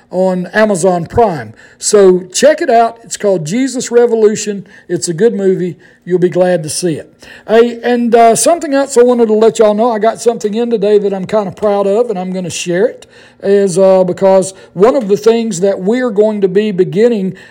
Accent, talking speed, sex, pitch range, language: American, 215 wpm, male, 185-225 Hz, English